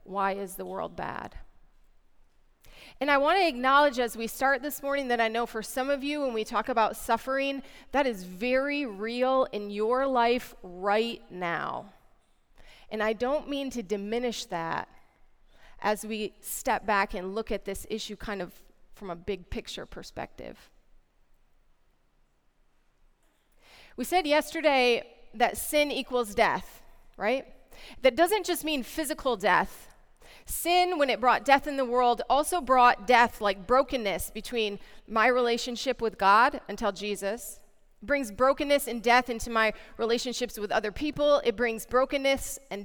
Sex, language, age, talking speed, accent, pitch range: female, English, 30-49, 150 wpm, American, 210-275 Hz